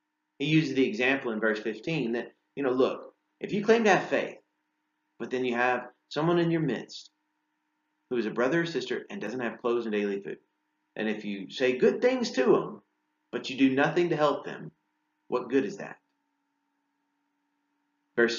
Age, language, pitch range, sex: 30-49, English, 110-175 Hz, male